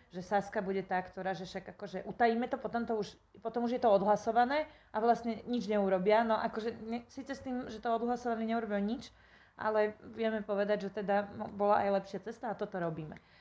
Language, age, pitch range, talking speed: Slovak, 30-49, 200-230 Hz, 200 wpm